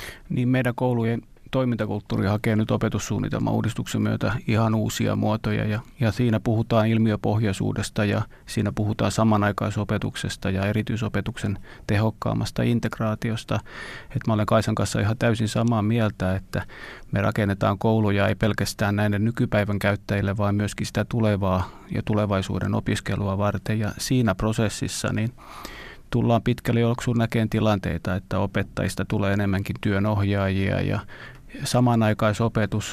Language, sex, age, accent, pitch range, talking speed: Finnish, male, 30-49, native, 100-115 Hz, 125 wpm